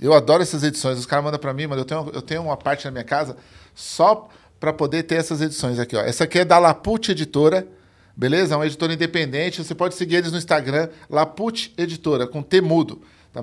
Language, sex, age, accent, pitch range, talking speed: Portuguese, male, 40-59, Brazilian, 130-180 Hz, 225 wpm